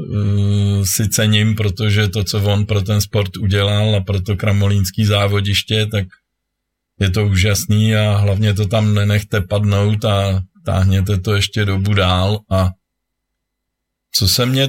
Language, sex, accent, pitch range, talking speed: Czech, male, native, 100-115 Hz, 140 wpm